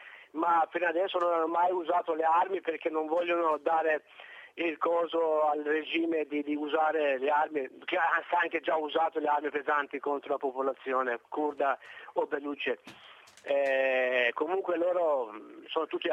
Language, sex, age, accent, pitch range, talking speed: Italian, male, 50-69, native, 145-170 Hz, 150 wpm